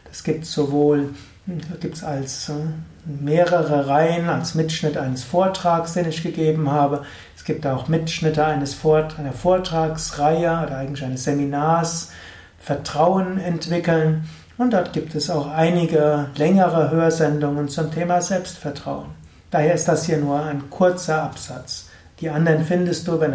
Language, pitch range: German, 145-175 Hz